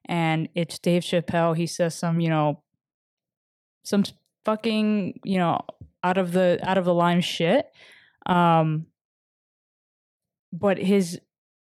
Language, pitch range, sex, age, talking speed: English, 170-215 Hz, female, 20-39, 125 wpm